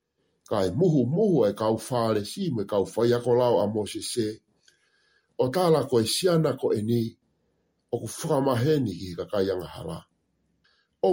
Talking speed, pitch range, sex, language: 130 wpm, 105-150 Hz, male, English